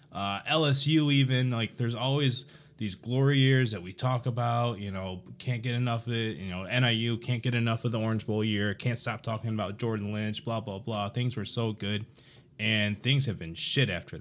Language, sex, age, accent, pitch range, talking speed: English, male, 20-39, American, 95-125 Hz, 210 wpm